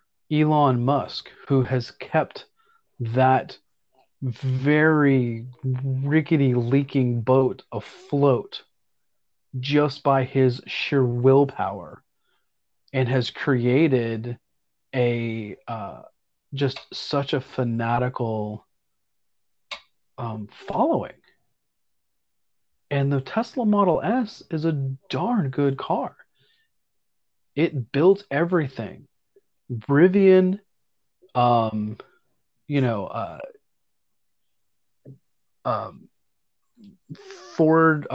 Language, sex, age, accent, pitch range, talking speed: English, male, 30-49, American, 120-150 Hz, 70 wpm